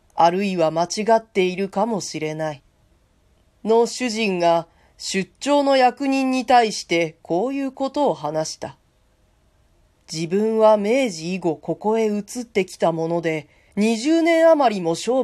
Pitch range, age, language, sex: 165-235 Hz, 40-59, Japanese, female